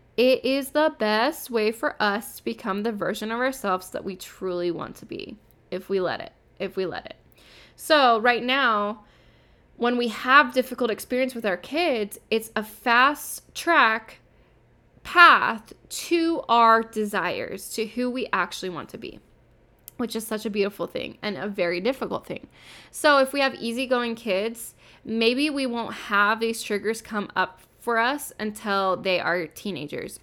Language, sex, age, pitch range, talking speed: English, female, 10-29, 200-255 Hz, 165 wpm